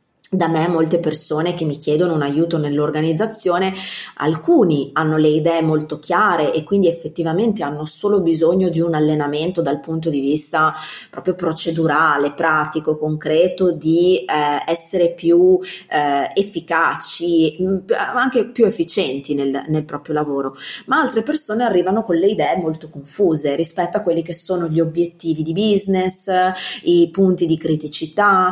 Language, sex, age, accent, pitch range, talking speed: Italian, female, 30-49, native, 155-185 Hz, 145 wpm